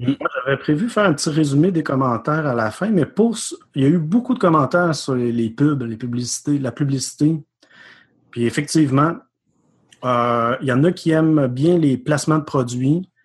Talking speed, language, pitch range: 195 wpm, French, 120-155 Hz